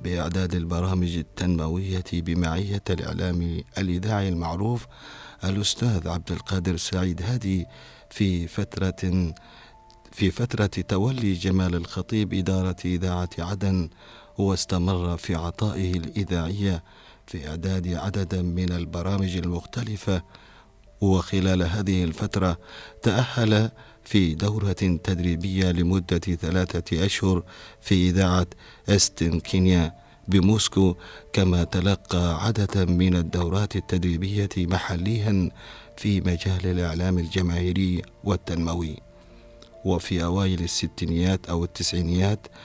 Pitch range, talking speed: 85-100 Hz, 90 wpm